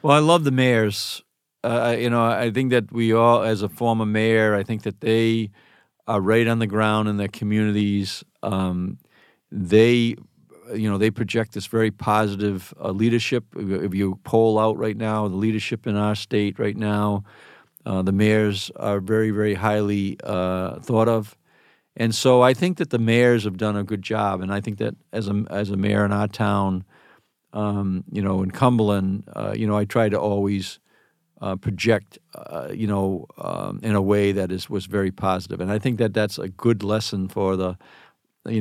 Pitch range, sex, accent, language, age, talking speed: 100-115 Hz, male, American, English, 50-69, 190 wpm